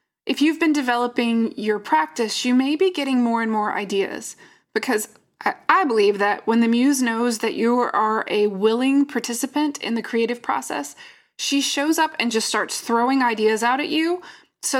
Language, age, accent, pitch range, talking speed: English, 20-39, American, 225-280 Hz, 180 wpm